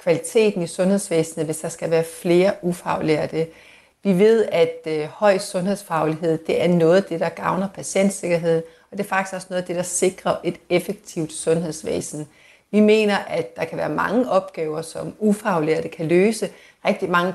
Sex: female